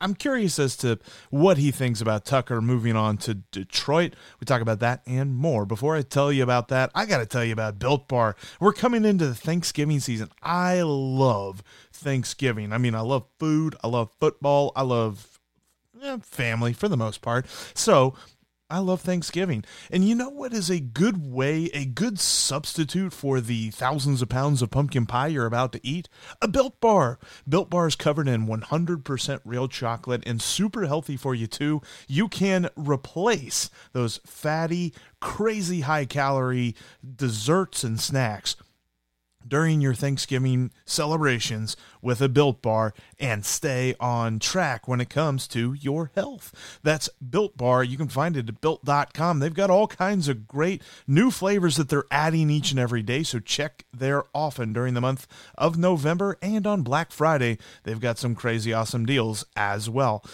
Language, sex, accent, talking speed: English, male, American, 170 wpm